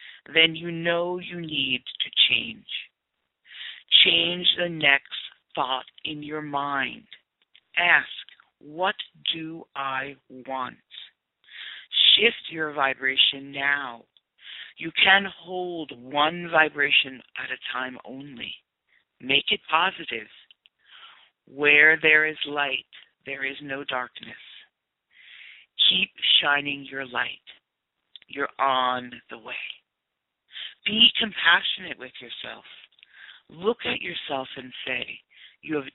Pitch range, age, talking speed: 130-160 Hz, 50-69, 105 wpm